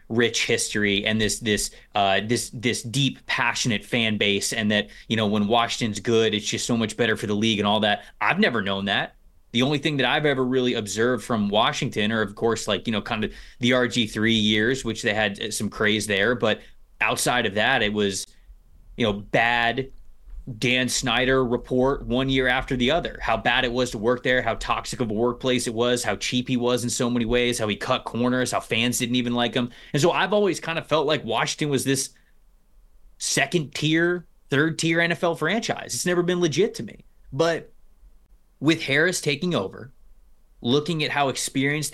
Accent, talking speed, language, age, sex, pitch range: American, 205 wpm, English, 20-39, male, 110-135 Hz